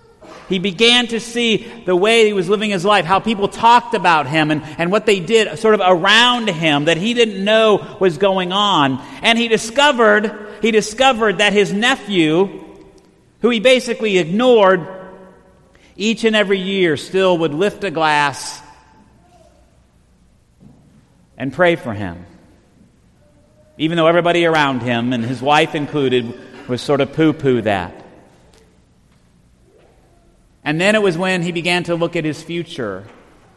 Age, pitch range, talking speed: 50-69, 120-190 Hz, 150 wpm